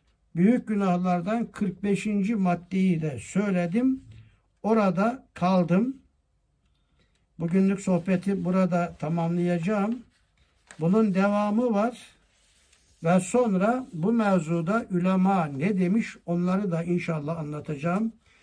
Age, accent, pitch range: 60-79, native, 155-195 Hz